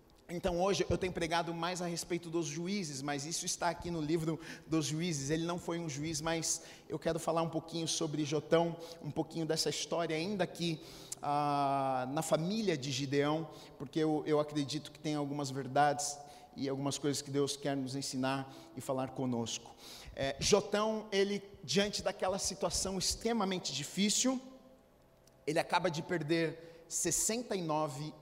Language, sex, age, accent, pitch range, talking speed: Portuguese, male, 40-59, Brazilian, 150-185 Hz, 155 wpm